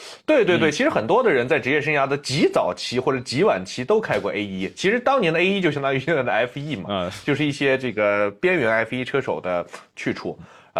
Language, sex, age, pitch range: Chinese, male, 20-39, 110-155 Hz